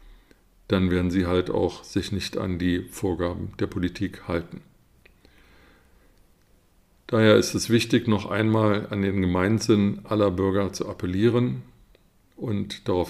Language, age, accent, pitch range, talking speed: German, 50-69, German, 90-105 Hz, 130 wpm